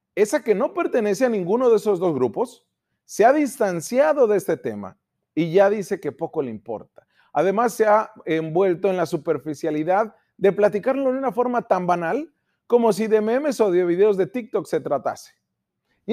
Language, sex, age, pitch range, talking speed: Spanish, male, 40-59, 165-230 Hz, 180 wpm